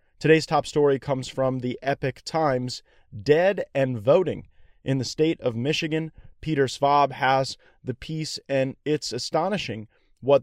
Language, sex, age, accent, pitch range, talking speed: English, male, 30-49, American, 130-155 Hz, 145 wpm